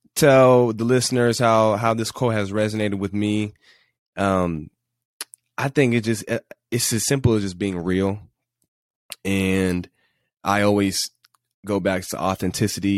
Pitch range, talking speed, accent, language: 95-110 Hz, 140 wpm, American, English